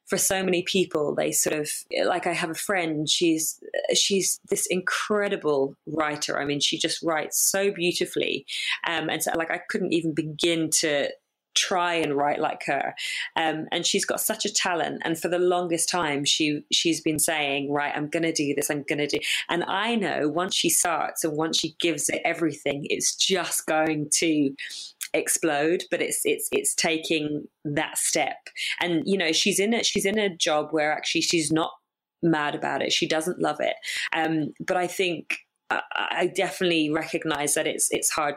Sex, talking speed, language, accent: female, 190 wpm, English, British